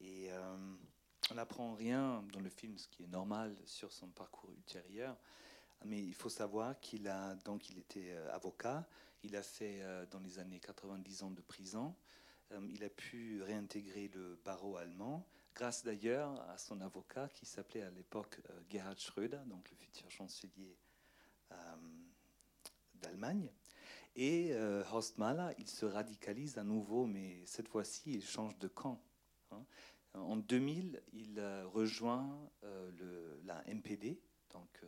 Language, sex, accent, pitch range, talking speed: French, male, French, 95-120 Hz, 150 wpm